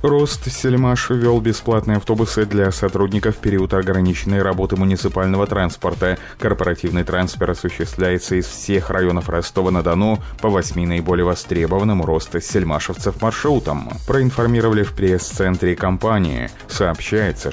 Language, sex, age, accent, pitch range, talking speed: Russian, male, 20-39, native, 90-105 Hz, 110 wpm